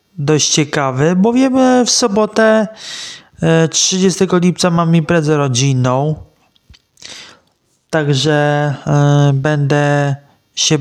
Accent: native